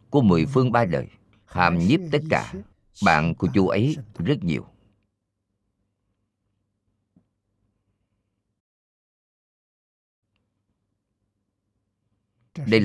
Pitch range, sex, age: 100-110 Hz, male, 50-69